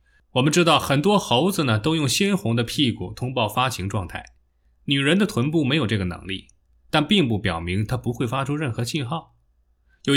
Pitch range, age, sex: 90-135 Hz, 20-39, male